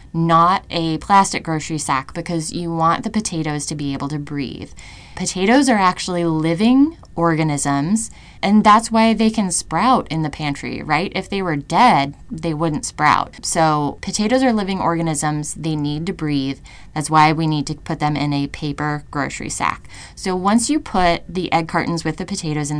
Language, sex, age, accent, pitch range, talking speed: English, female, 20-39, American, 150-180 Hz, 180 wpm